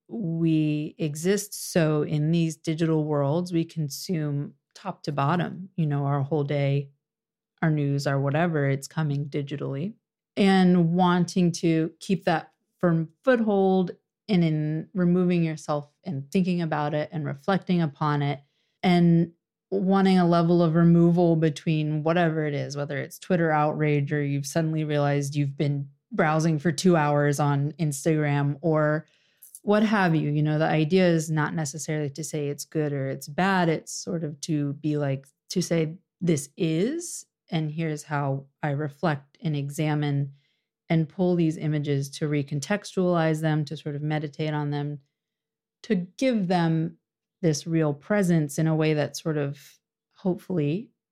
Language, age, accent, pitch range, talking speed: English, 30-49, American, 145-175 Hz, 155 wpm